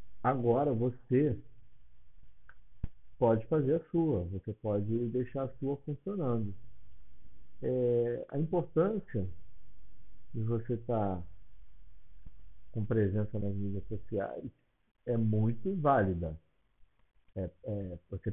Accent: Brazilian